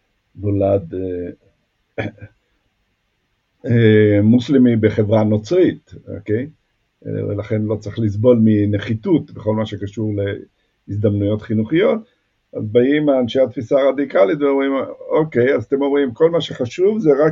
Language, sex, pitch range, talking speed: Hebrew, male, 100-125 Hz, 120 wpm